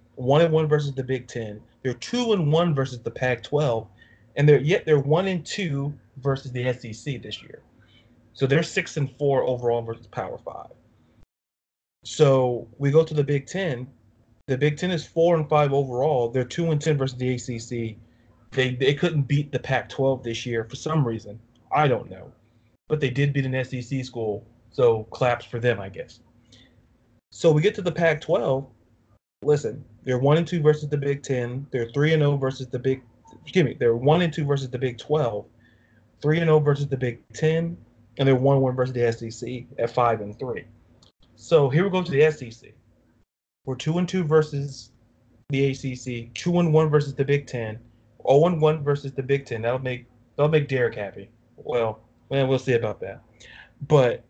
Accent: American